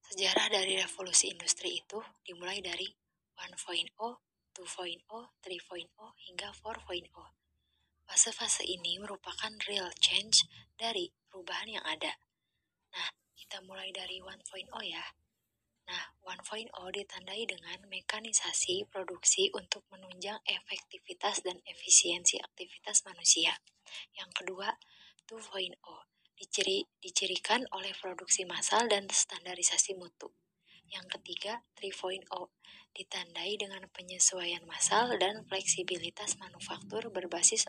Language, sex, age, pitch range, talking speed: Indonesian, female, 20-39, 180-205 Hz, 100 wpm